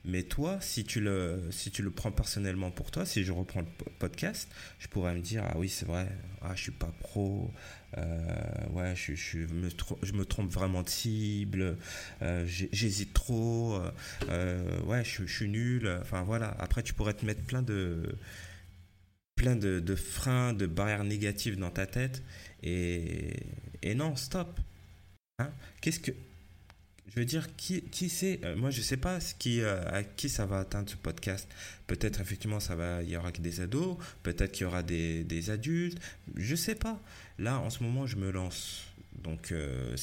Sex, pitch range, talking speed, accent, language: male, 90-115 Hz, 185 wpm, French, French